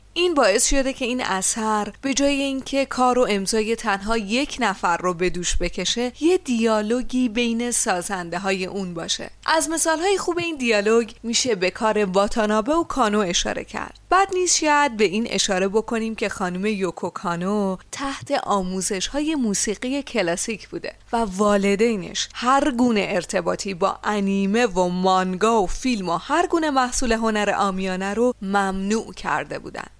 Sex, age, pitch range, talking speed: female, 30-49, 195-260 Hz, 150 wpm